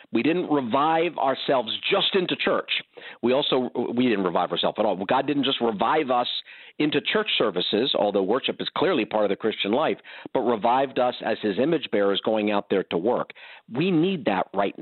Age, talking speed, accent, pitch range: 50-69, 195 wpm, American, 115-160 Hz